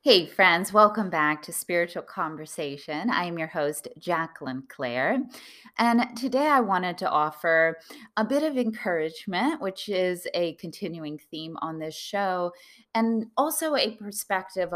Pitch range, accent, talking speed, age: 155-200 Hz, American, 140 wpm, 20-39